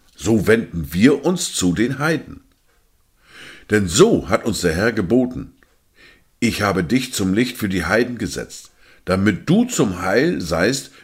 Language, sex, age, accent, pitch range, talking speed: German, male, 50-69, German, 90-125 Hz, 150 wpm